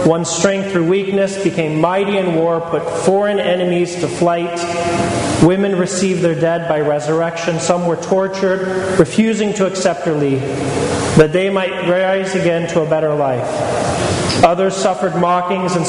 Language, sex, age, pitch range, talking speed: English, male, 40-59, 160-190 Hz, 150 wpm